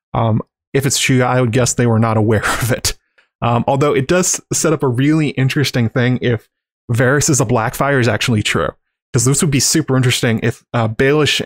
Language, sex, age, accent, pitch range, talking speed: English, male, 20-39, American, 115-140 Hz, 210 wpm